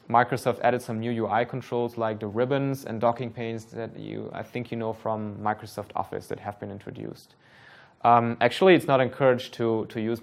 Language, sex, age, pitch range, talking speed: English, male, 20-39, 110-125 Hz, 195 wpm